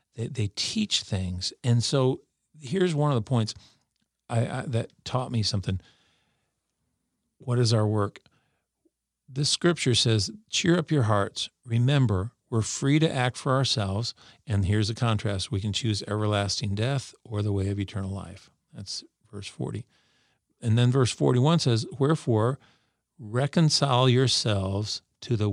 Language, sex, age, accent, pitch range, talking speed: English, male, 50-69, American, 105-140 Hz, 145 wpm